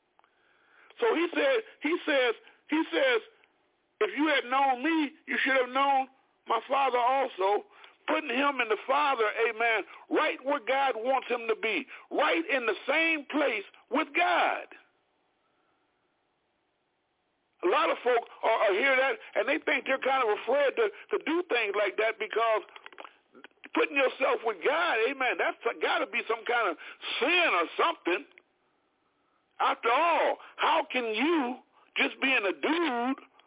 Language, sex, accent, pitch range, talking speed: English, male, American, 260-395 Hz, 150 wpm